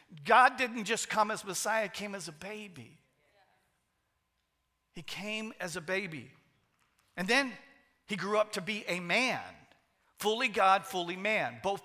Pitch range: 185-230 Hz